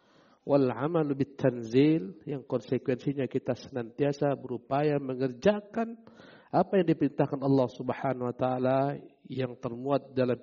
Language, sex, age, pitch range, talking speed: Indonesian, male, 50-69, 125-150 Hz, 110 wpm